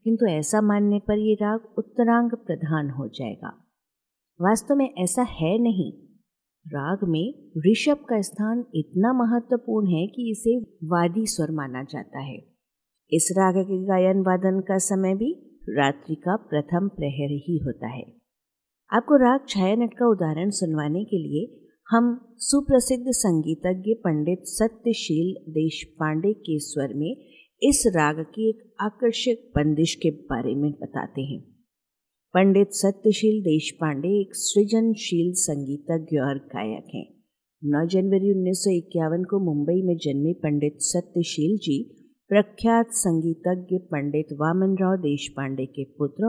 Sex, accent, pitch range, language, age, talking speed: female, native, 155-215 Hz, Hindi, 50-69, 125 wpm